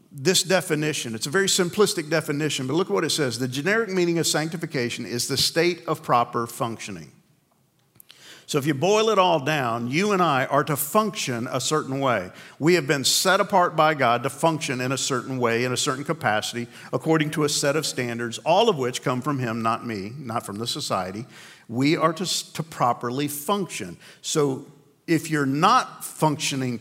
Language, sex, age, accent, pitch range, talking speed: English, male, 50-69, American, 130-160 Hz, 190 wpm